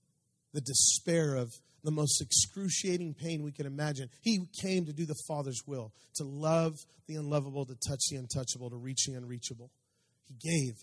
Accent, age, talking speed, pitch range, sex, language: American, 40-59, 170 wpm, 135-195 Hz, male, English